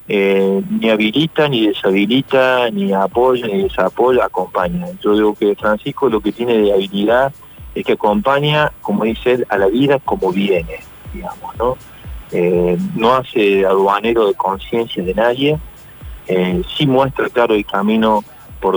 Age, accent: 30-49, Argentinian